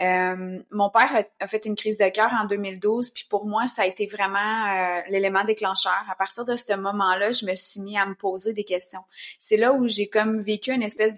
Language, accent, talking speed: French, Canadian, 230 wpm